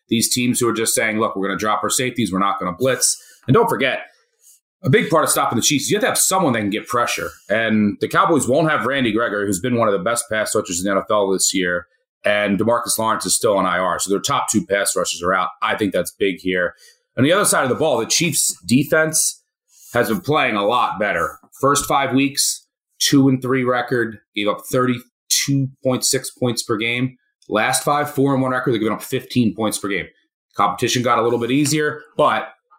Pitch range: 105-135 Hz